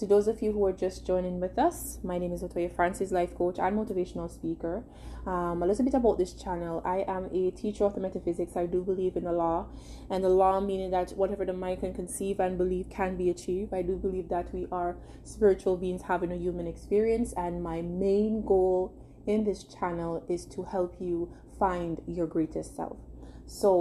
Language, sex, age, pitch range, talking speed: English, female, 20-39, 170-190 Hz, 210 wpm